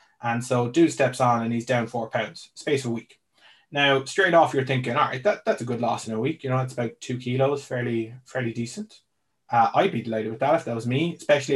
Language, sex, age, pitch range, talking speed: English, male, 20-39, 115-135 Hz, 245 wpm